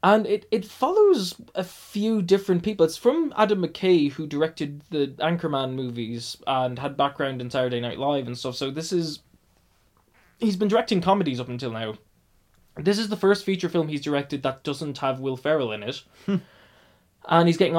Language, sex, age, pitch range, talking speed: English, male, 20-39, 130-180 Hz, 180 wpm